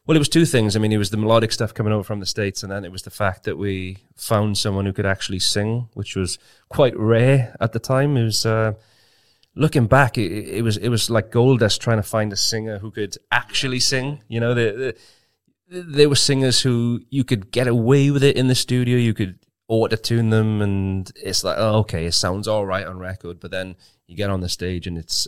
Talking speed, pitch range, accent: 235 wpm, 95-110 Hz, British